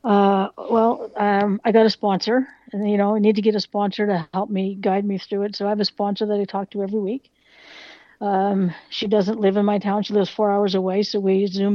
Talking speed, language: 250 wpm, English